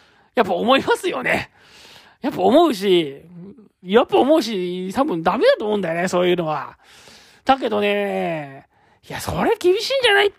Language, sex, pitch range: Japanese, male, 180-270 Hz